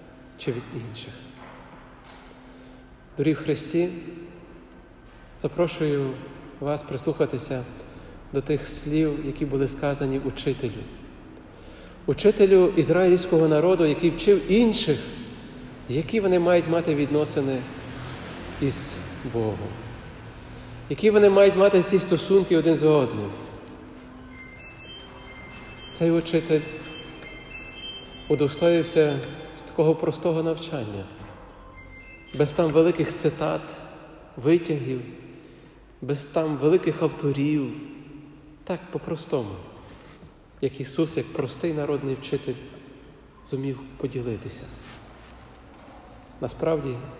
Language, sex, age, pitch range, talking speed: Ukrainian, male, 40-59, 120-155 Hz, 80 wpm